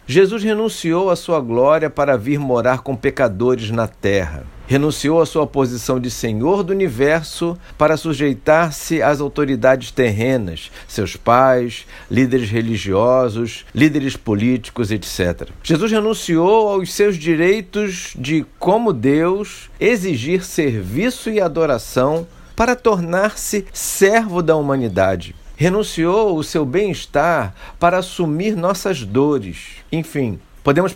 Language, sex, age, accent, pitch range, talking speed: Portuguese, male, 50-69, Brazilian, 125-175 Hz, 115 wpm